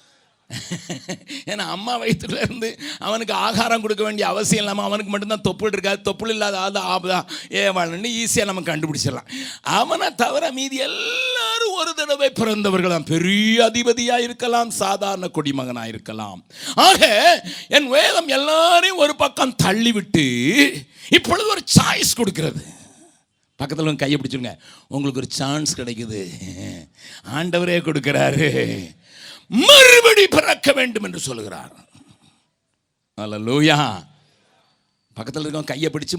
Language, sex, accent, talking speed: Tamil, male, native, 100 wpm